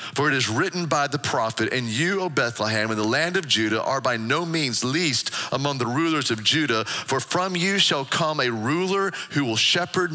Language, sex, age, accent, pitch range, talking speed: English, male, 40-59, American, 130-170 Hz, 215 wpm